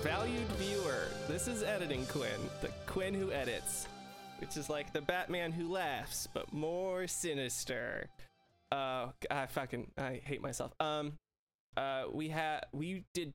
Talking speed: 150 wpm